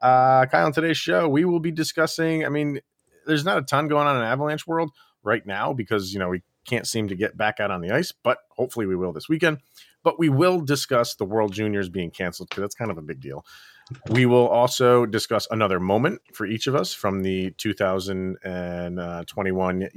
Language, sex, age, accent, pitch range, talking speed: English, male, 30-49, American, 95-130 Hz, 210 wpm